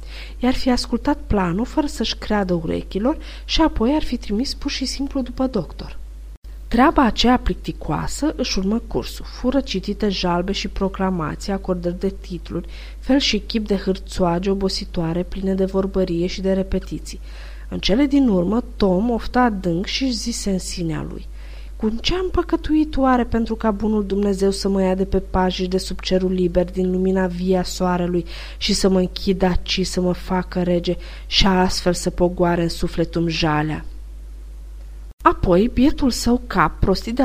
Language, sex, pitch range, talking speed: Romanian, female, 175-240 Hz, 160 wpm